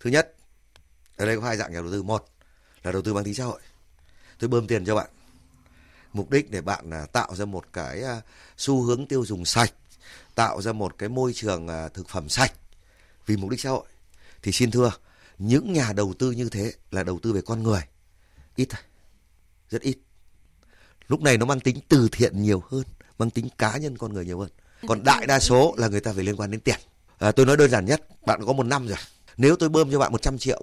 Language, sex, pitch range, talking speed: Vietnamese, male, 90-130 Hz, 225 wpm